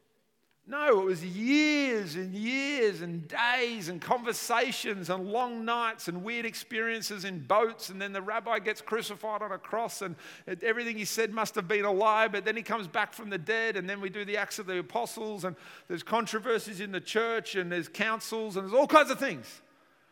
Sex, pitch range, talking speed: male, 170-220 Hz, 205 wpm